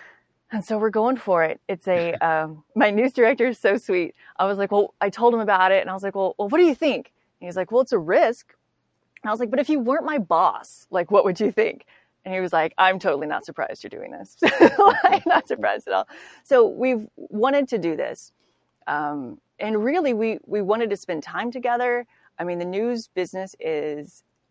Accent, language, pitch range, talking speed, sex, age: American, English, 175-240 Hz, 235 wpm, female, 30-49